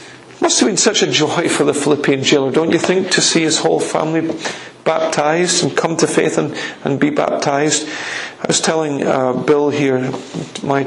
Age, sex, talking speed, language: 40-59, male, 195 wpm, English